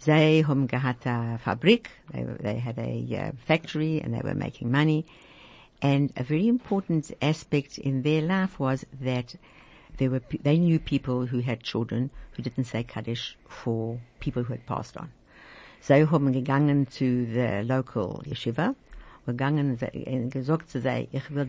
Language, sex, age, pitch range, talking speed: English, female, 60-79, 125-150 Hz, 130 wpm